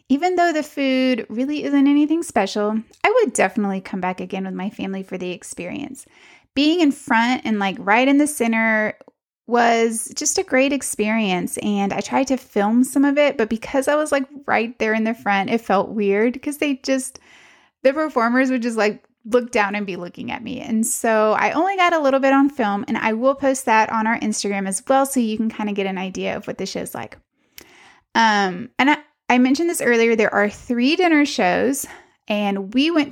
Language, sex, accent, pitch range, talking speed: English, female, American, 210-275 Hz, 215 wpm